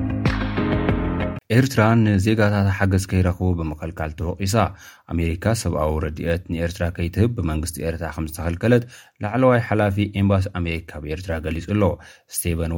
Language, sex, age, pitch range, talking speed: Amharic, male, 30-49, 80-105 Hz, 110 wpm